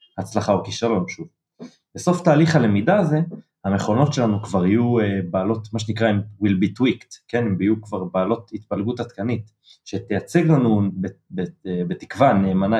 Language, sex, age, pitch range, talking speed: Hebrew, male, 30-49, 95-145 Hz, 140 wpm